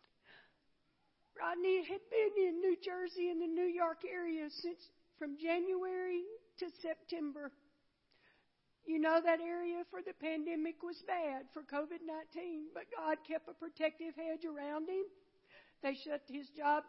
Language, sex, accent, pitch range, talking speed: English, female, American, 300-345 Hz, 140 wpm